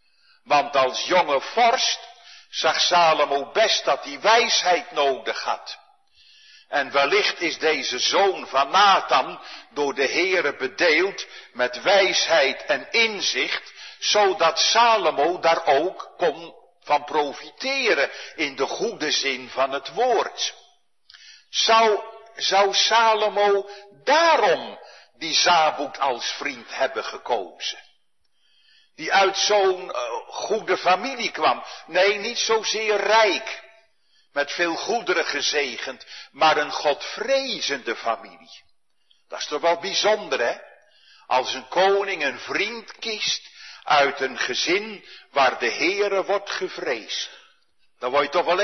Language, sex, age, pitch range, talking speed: Dutch, male, 50-69, 175-250 Hz, 115 wpm